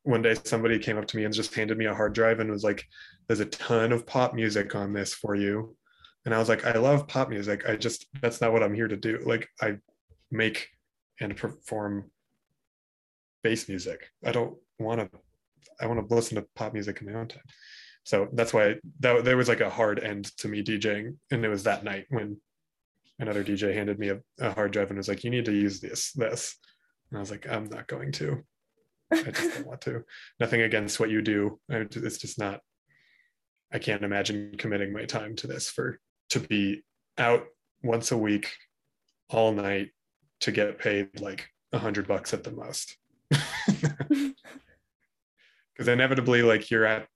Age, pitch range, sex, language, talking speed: 20-39, 105-120 Hz, male, English, 195 wpm